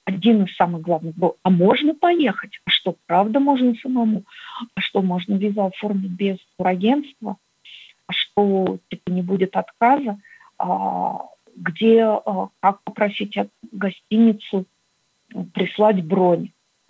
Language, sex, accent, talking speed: Russian, female, native, 115 wpm